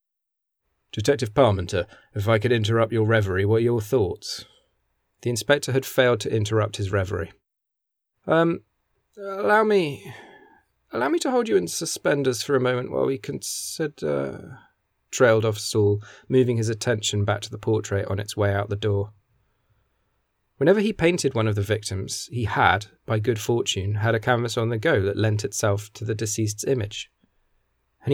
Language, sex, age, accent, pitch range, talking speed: English, male, 30-49, British, 105-125 Hz, 165 wpm